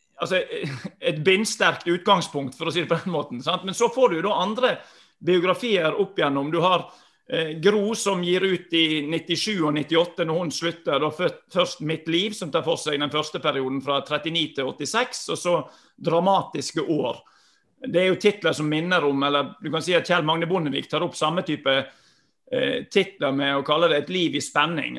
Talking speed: 195 wpm